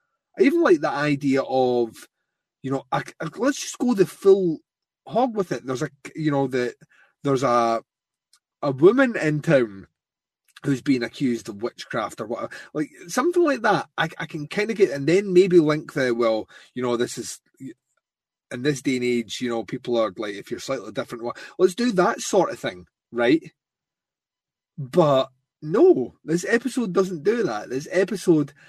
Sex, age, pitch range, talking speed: male, 30-49, 125-185 Hz, 180 wpm